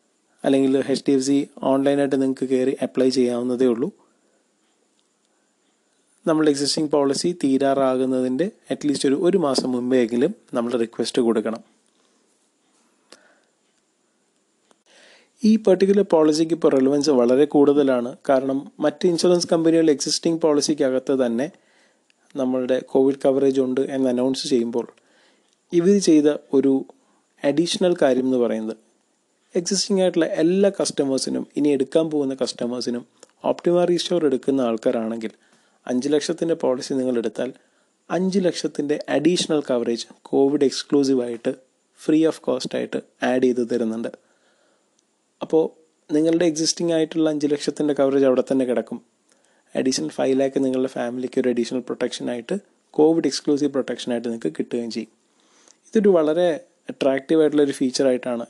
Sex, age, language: male, 30-49, Malayalam